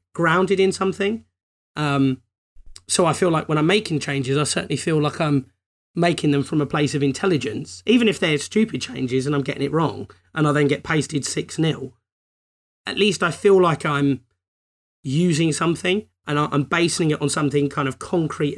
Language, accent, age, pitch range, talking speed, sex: English, British, 30-49, 120-165 Hz, 185 wpm, male